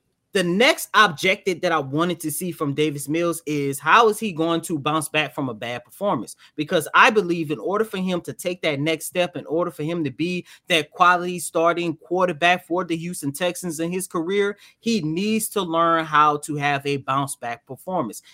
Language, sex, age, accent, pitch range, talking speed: English, male, 20-39, American, 145-195 Hz, 205 wpm